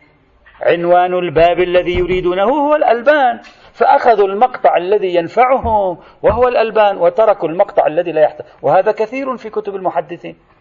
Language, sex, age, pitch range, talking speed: Arabic, male, 40-59, 165-250 Hz, 125 wpm